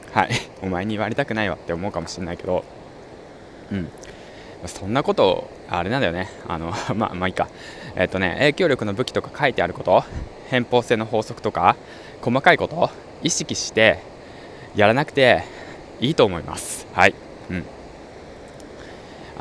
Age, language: 20-39, Japanese